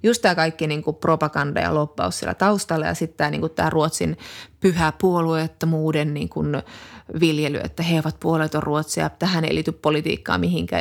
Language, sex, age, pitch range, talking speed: Finnish, female, 20-39, 155-190 Hz, 160 wpm